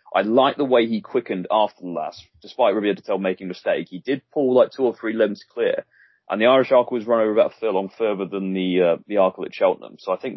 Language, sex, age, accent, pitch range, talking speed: English, male, 30-49, British, 95-125 Hz, 265 wpm